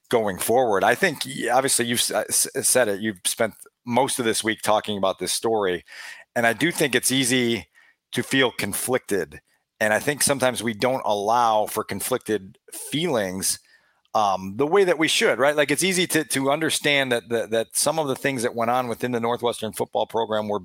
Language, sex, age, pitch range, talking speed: English, male, 40-59, 115-140 Hz, 190 wpm